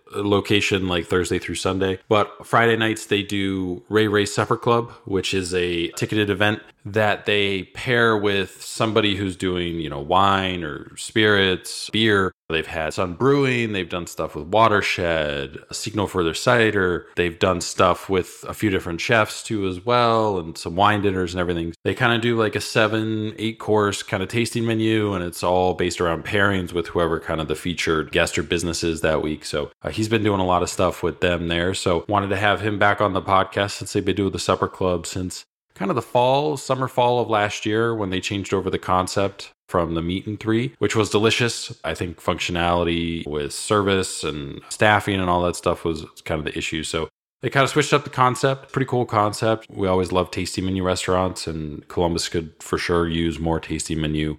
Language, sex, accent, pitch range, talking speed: English, male, American, 85-110 Hz, 205 wpm